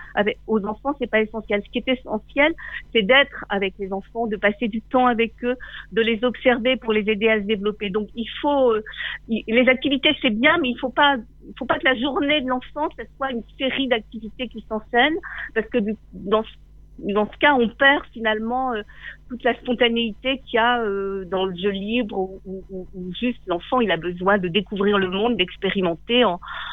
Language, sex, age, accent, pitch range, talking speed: French, female, 50-69, French, 205-255 Hz, 205 wpm